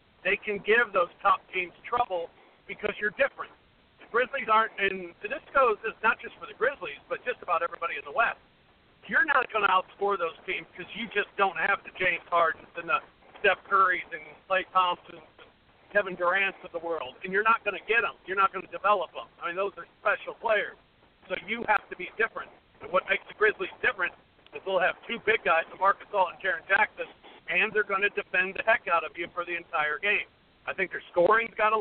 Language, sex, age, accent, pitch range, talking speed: English, male, 50-69, American, 175-220 Hz, 230 wpm